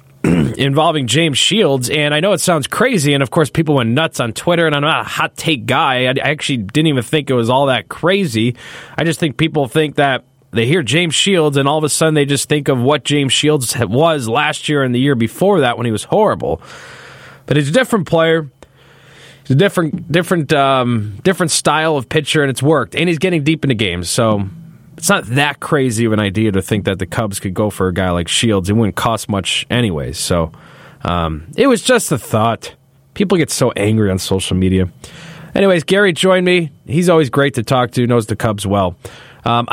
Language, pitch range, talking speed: English, 120-160 Hz, 220 wpm